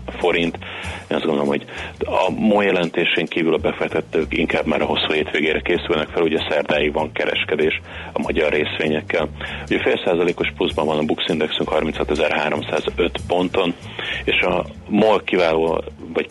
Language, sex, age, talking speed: Hungarian, male, 30-49, 145 wpm